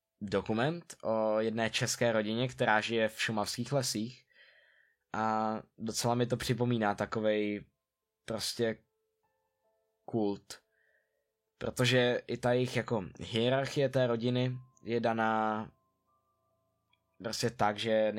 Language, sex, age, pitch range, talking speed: Czech, male, 20-39, 105-130 Hz, 100 wpm